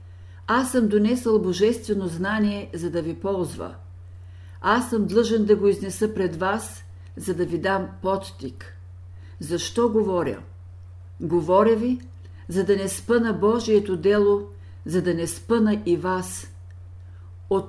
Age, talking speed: 50-69, 130 wpm